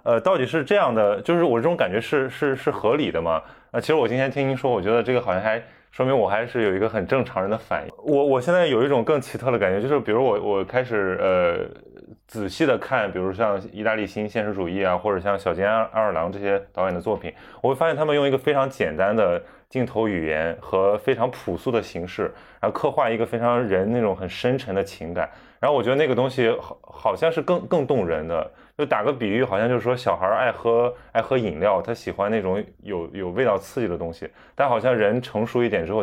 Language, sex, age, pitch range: Chinese, male, 20-39, 100-125 Hz